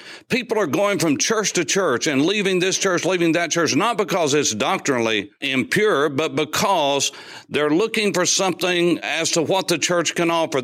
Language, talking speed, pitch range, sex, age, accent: English, 180 wpm, 140-185 Hz, male, 60-79, American